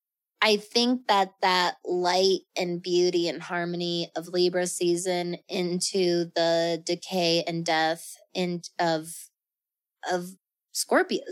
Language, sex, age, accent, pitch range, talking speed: English, female, 20-39, American, 175-205 Hz, 110 wpm